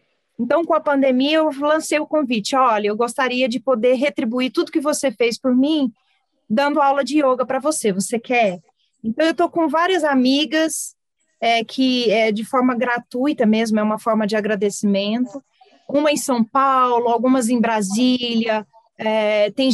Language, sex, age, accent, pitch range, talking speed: Portuguese, female, 30-49, Brazilian, 225-275 Hz, 160 wpm